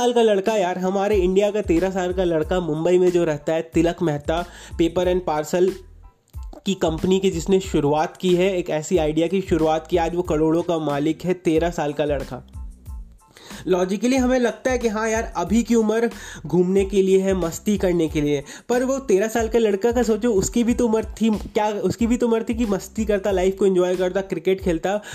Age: 20-39